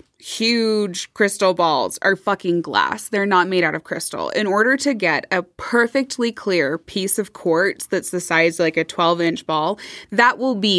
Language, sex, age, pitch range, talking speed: English, female, 20-39, 175-235 Hz, 180 wpm